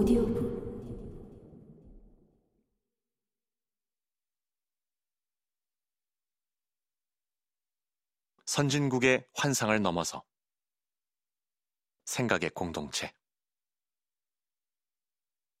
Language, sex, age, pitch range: Korean, male, 30-49, 105-165 Hz